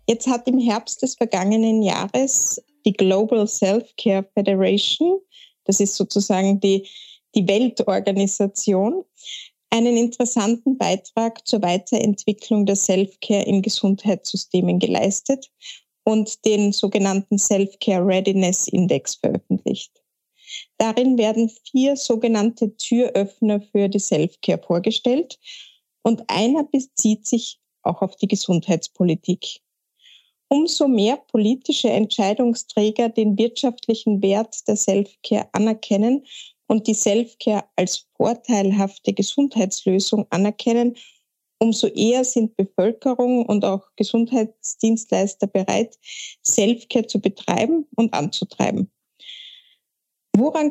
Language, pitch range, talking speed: German, 200-245 Hz, 95 wpm